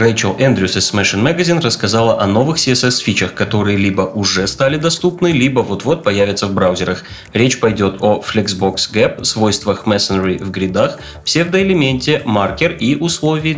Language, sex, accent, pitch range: Russian, male, native, 95-130 Hz